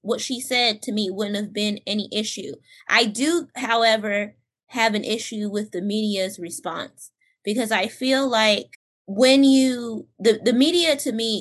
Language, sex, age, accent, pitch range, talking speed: English, female, 20-39, American, 205-245 Hz, 165 wpm